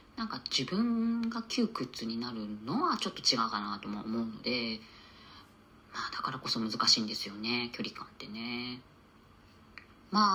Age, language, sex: 40-59, Japanese, female